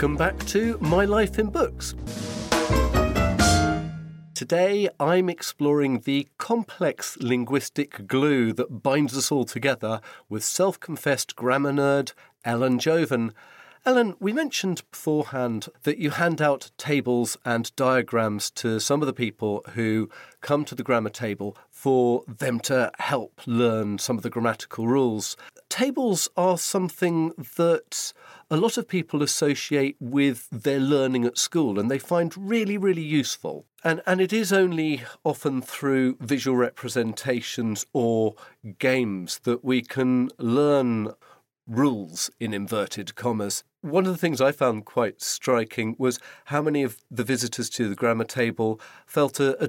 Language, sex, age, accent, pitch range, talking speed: English, male, 40-59, British, 120-150 Hz, 140 wpm